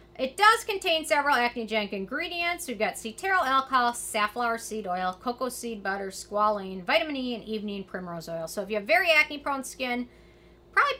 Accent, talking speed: American, 170 wpm